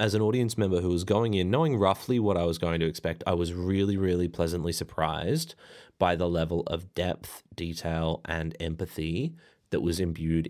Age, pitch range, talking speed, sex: 30-49, 85-105 Hz, 190 wpm, male